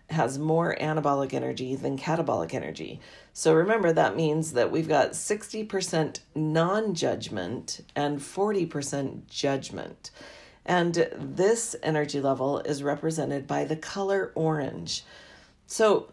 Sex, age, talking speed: female, 40-59, 110 wpm